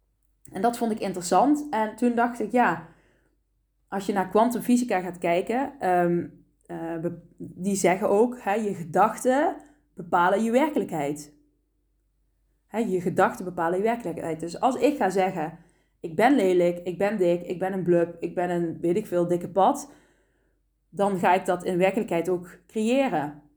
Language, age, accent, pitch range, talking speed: Dutch, 20-39, Dutch, 175-235 Hz, 165 wpm